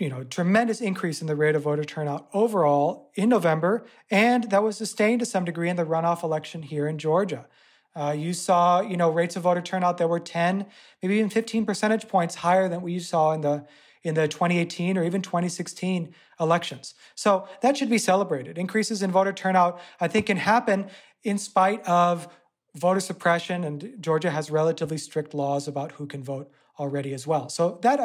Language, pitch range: English, 170-225 Hz